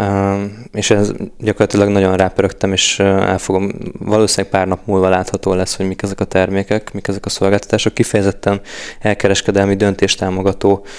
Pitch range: 95-105 Hz